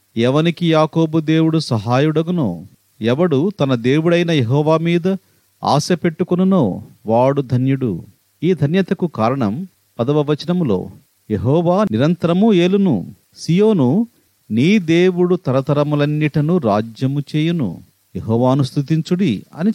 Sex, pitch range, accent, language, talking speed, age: male, 130-180 Hz, native, Telugu, 90 wpm, 40-59